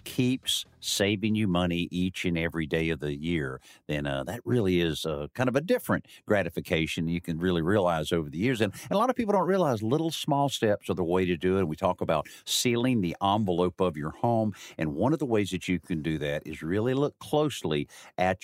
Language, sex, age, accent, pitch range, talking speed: English, male, 50-69, American, 85-120 Hz, 230 wpm